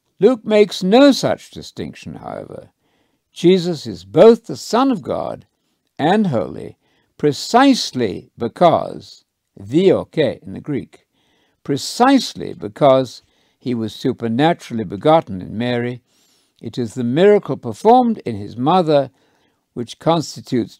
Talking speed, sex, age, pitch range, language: 115 wpm, male, 60-79, 110-180 Hz, English